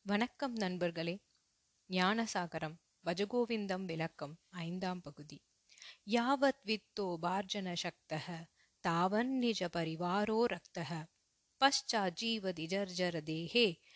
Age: 30-49